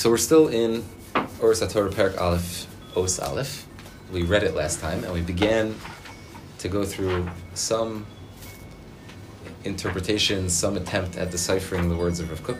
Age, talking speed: 20-39, 155 wpm